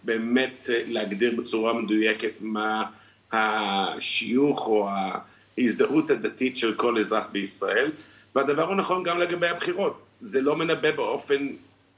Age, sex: 50-69, male